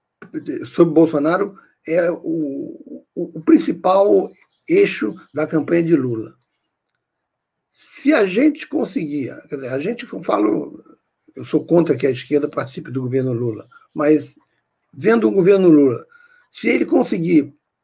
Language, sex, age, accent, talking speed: Portuguese, male, 60-79, Brazilian, 135 wpm